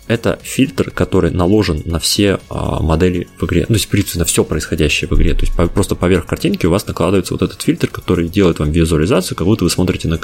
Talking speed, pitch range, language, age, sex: 230 wpm, 80-100 Hz, Russian, 20-39, male